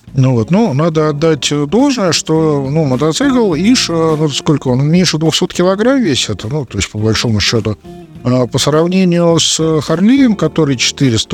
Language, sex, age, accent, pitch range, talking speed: Russian, male, 50-69, native, 120-160 Hz, 160 wpm